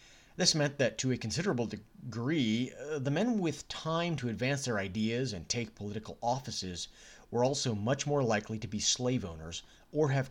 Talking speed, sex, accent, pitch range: 175 wpm, male, American, 105-140 Hz